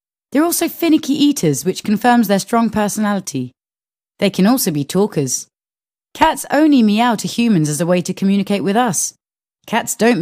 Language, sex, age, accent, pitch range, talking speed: English, female, 20-39, British, 155-220 Hz, 165 wpm